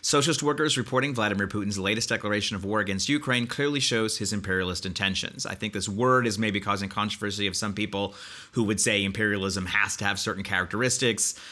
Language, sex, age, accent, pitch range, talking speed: English, male, 30-49, American, 95-115 Hz, 190 wpm